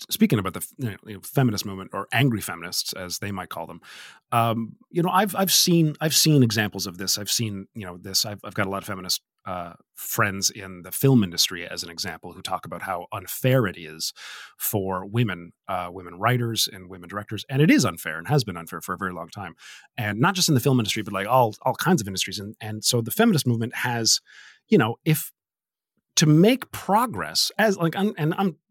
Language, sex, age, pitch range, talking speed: English, male, 30-49, 105-170 Hz, 220 wpm